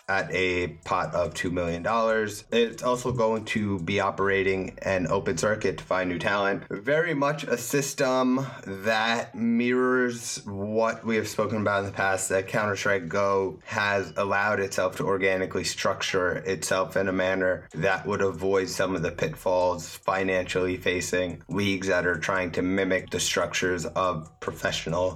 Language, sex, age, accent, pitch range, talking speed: English, male, 20-39, American, 90-110 Hz, 155 wpm